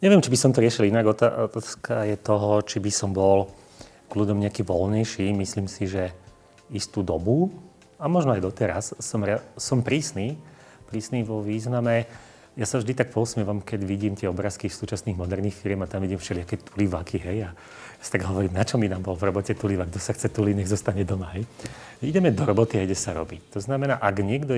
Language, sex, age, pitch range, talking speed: Slovak, male, 30-49, 100-130 Hz, 205 wpm